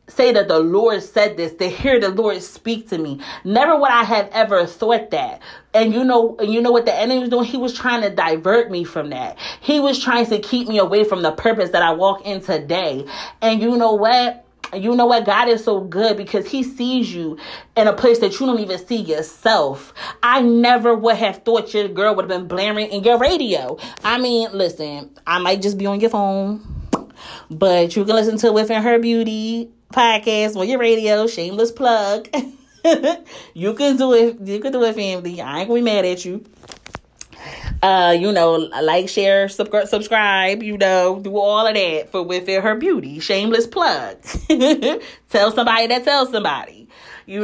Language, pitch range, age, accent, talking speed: English, 185-235 Hz, 30-49, American, 195 wpm